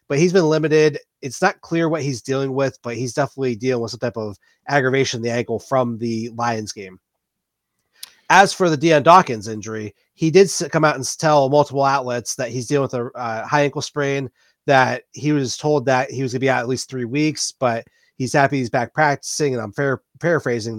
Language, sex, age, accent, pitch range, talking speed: English, male, 30-49, American, 125-155 Hz, 220 wpm